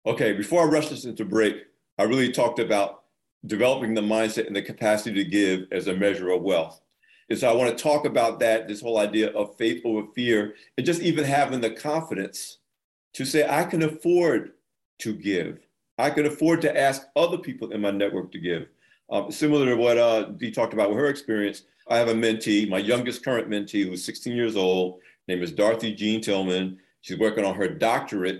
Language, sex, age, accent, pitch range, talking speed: English, male, 50-69, American, 100-130 Hz, 205 wpm